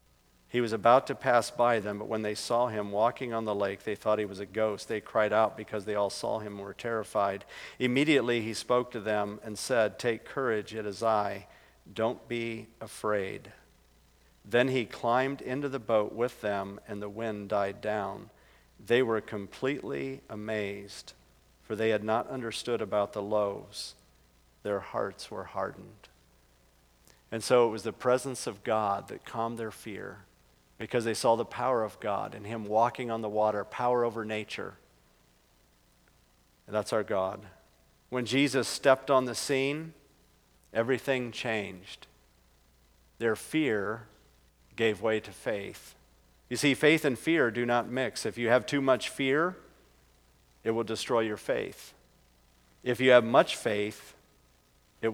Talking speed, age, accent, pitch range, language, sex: 160 wpm, 50-69, American, 75-120 Hz, English, male